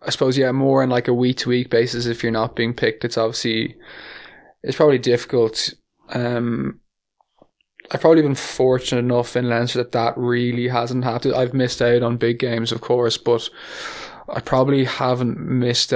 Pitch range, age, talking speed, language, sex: 115-125 Hz, 20-39, 170 wpm, English, male